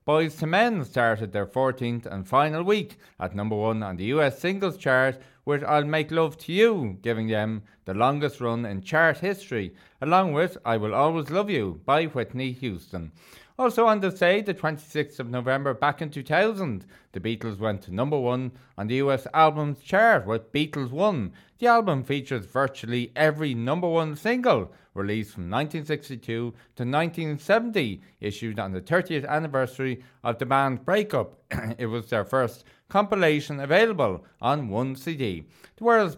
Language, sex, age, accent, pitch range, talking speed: English, male, 30-49, Irish, 115-155 Hz, 165 wpm